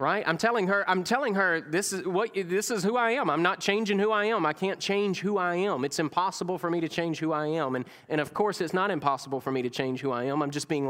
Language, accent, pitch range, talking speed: English, American, 150-195 Hz, 290 wpm